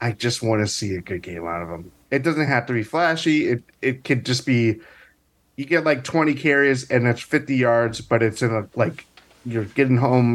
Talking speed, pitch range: 225 wpm, 105-125 Hz